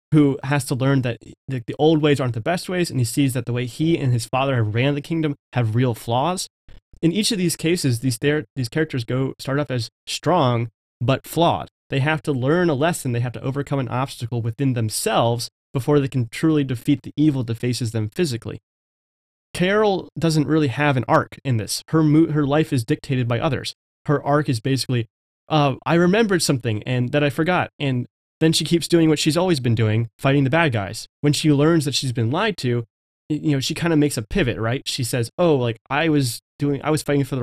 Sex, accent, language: male, American, English